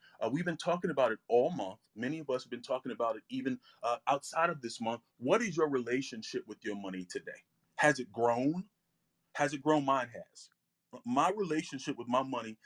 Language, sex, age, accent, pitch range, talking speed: English, male, 30-49, American, 120-165 Hz, 205 wpm